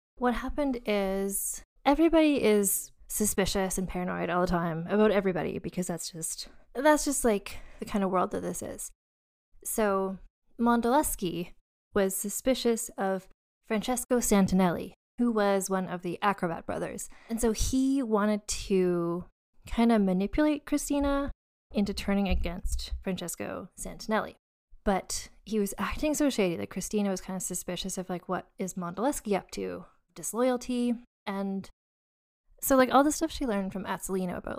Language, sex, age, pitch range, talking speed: English, female, 20-39, 185-230 Hz, 145 wpm